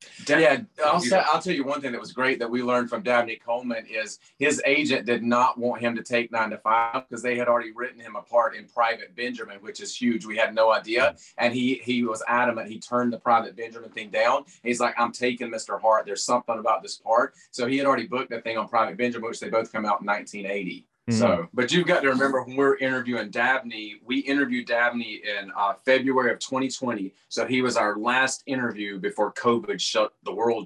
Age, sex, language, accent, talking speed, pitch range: 30-49, male, English, American, 225 wpm, 115-130 Hz